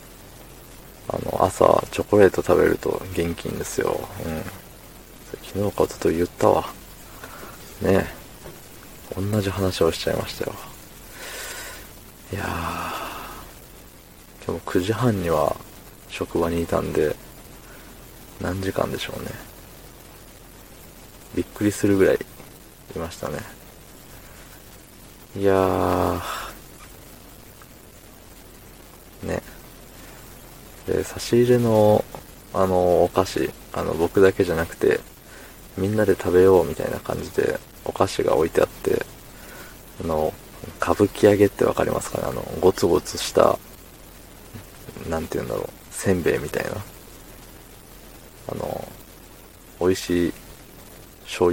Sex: male